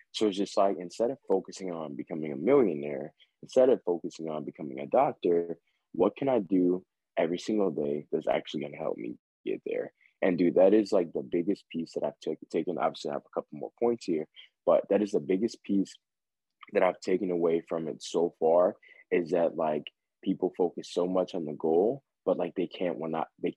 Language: English